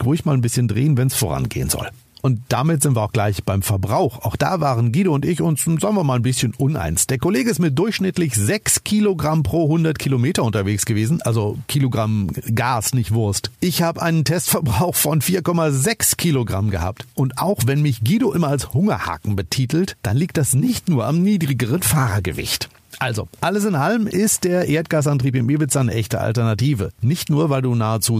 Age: 50-69